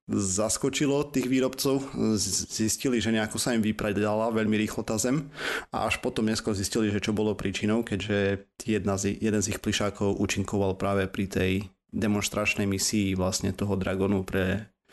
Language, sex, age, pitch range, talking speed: Slovak, male, 30-49, 95-115 Hz, 155 wpm